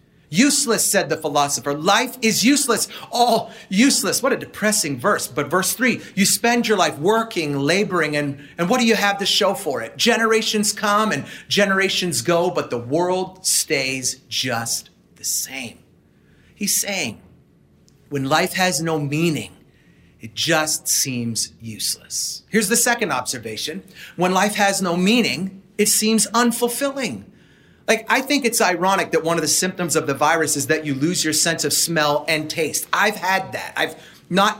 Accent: American